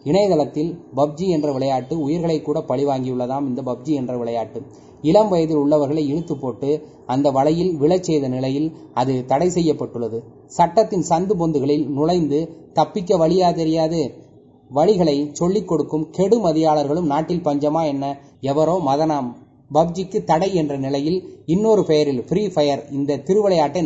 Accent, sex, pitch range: native, male, 140-170 Hz